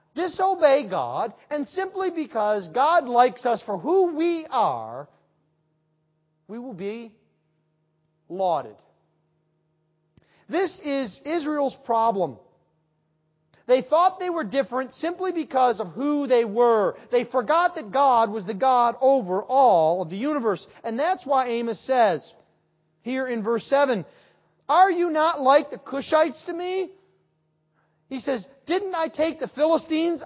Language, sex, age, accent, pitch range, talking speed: English, male, 40-59, American, 200-315 Hz, 135 wpm